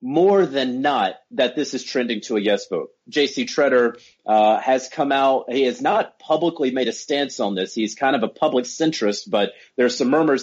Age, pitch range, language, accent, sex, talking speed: 30-49, 110-140 Hz, English, American, male, 205 wpm